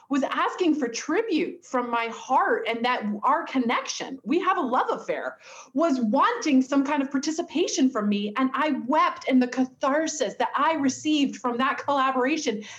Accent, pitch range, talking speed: American, 230-310 Hz, 170 wpm